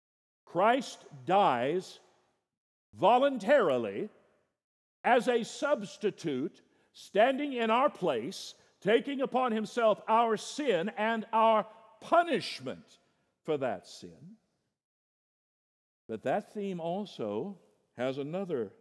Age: 50-69